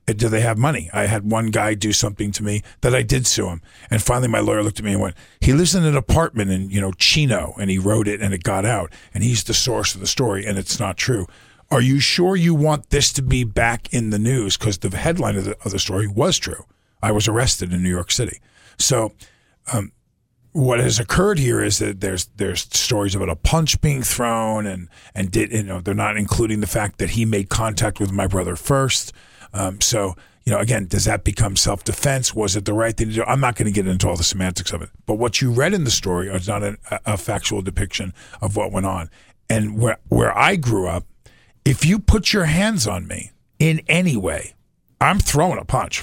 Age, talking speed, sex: 50-69, 235 wpm, male